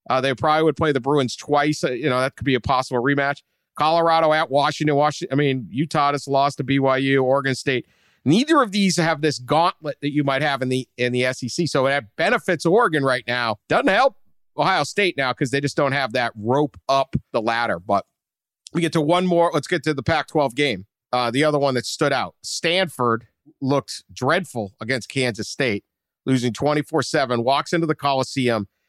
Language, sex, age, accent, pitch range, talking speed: English, male, 50-69, American, 120-150 Hz, 200 wpm